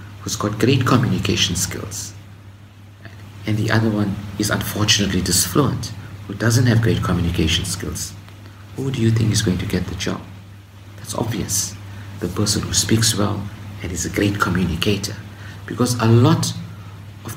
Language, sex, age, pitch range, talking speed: English, male, 50-69, 100-110 Hz, 150 wpm